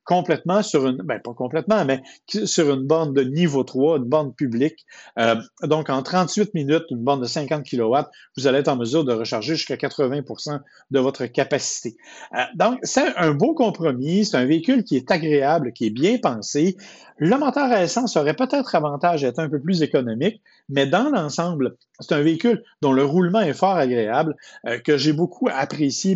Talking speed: 190 wpm